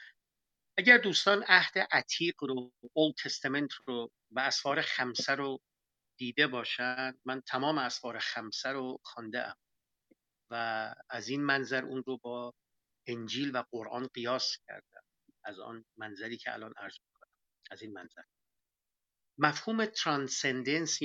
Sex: male